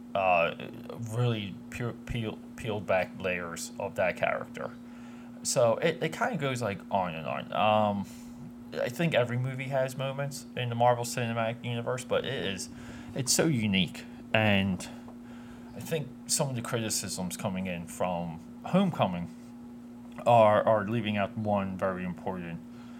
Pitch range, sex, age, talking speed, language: 95-120 Hz, male, 30-49, 145 wpm, English